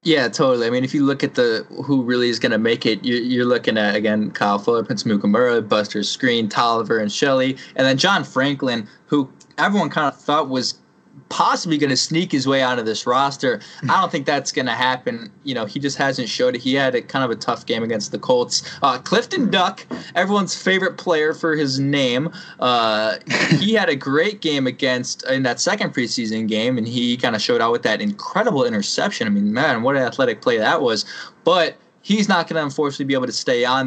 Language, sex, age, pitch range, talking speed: English, male, 20-39, 125-170 Hz, 225 wpm